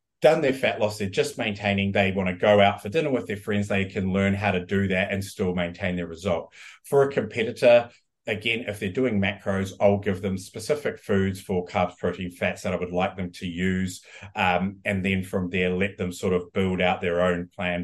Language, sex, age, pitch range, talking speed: English, male, 30-49, 95-105 Hz, 225 wpm